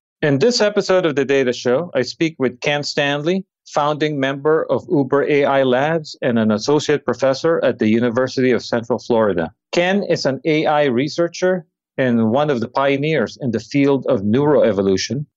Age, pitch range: 40-59, 120-150 Hz